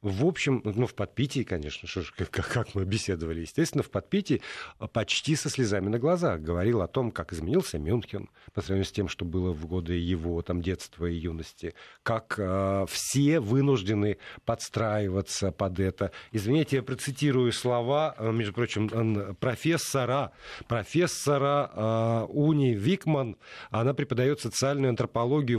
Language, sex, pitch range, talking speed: Russian, male, 100-145 Hz, 145 wpm